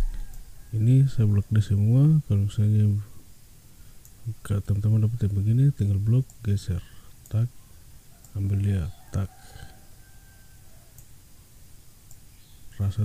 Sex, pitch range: male, 95-115 Hz